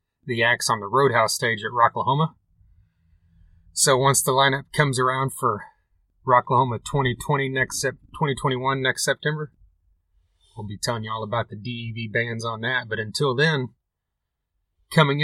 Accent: American